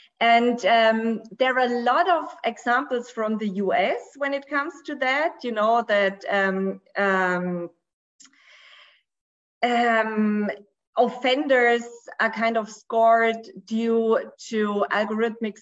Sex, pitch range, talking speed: female, 210-265 Hz, 115 wpm